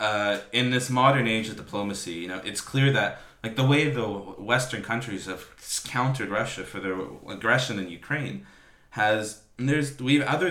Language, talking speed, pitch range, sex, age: English, 170 wpm, 95-120 Hz, male, 20-39